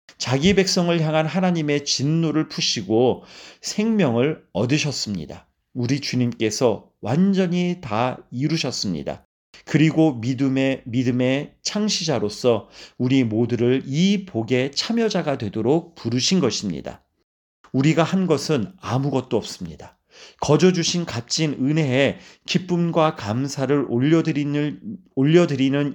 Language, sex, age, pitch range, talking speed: Portuguese, male, 40-59, 125-165 Hz, 90 wpm